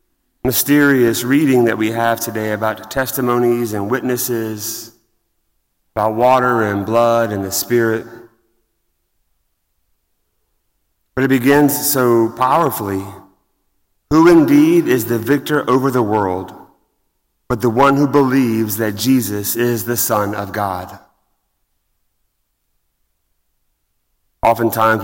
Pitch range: 105-125 Hz